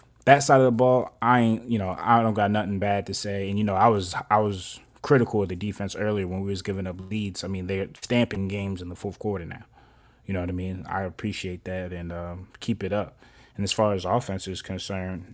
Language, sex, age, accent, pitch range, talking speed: English, male, 20-39, American, 95-110 Hz, 250 wpm